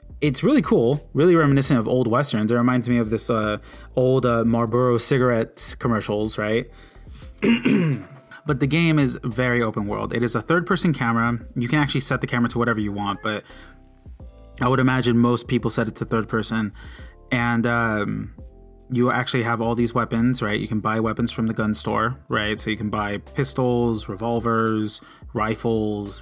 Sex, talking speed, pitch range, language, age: male, 180 wpm, 110-130 Hz, English, 30-49